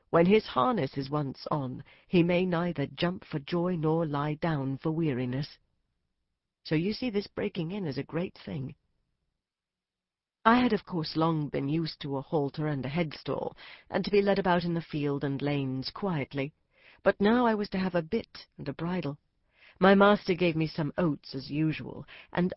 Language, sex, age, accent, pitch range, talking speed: English, female, 40-59, British, 145-195 Hz, 190 wpm